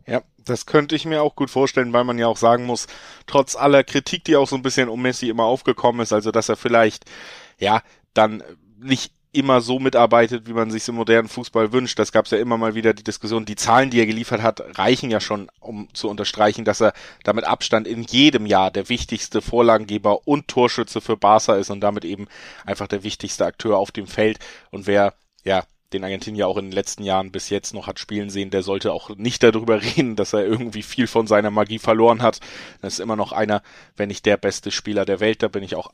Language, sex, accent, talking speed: German, male, German, 230 wpm